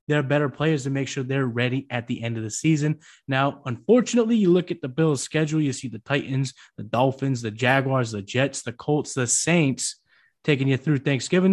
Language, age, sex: English, 20-39, male